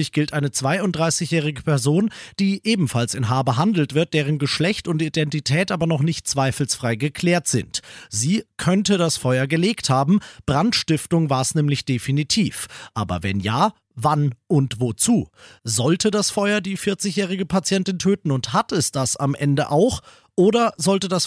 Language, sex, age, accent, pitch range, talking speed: German, male, 40-59, German, 135-180 Hz, 150 wpm